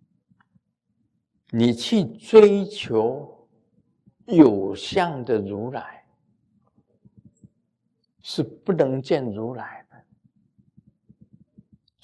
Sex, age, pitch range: male, 50-69, 145-200 Hz